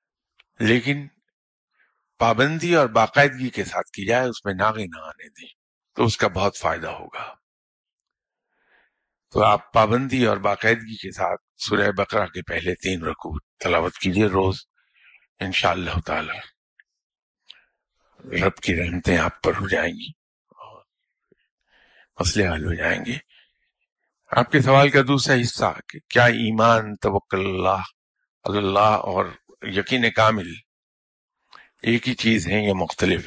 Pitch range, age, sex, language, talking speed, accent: 100-145 Hz, 50-69, male, English, 125 wpm, Indian